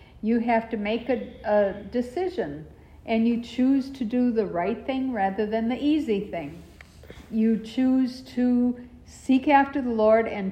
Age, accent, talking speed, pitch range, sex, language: 60-79, American, 160 wpm, 195-250 Hz, female, English